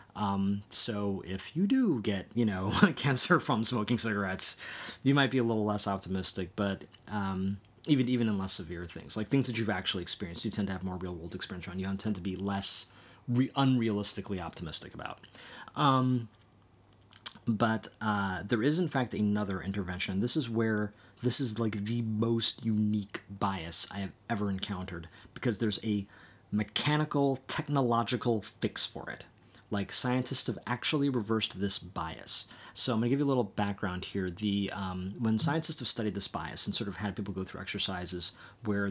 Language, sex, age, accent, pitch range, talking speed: English, male, 20-39, American, 95-115 Hz, 175 wpm